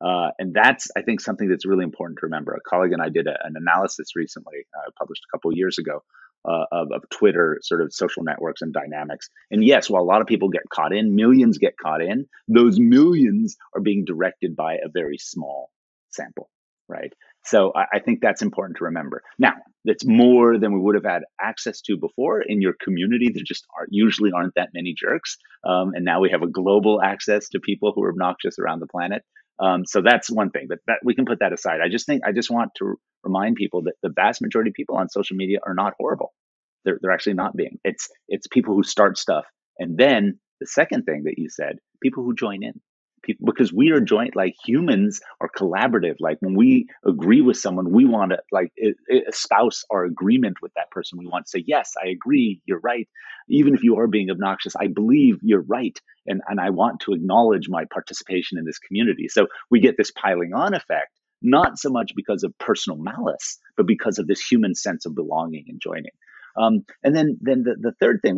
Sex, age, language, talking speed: male, 30-49, English, 220 wpm